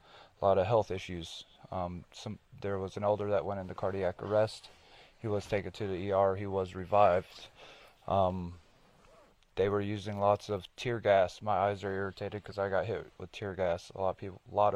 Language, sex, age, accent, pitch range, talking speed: English, male, 20-39, American, 95-105 Hz, 205 wpm